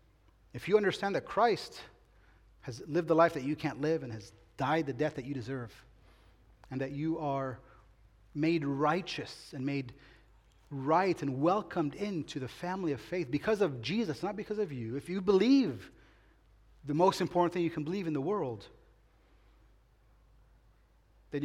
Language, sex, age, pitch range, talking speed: English, male, 30-49, 120-170 Hz, 160 wpm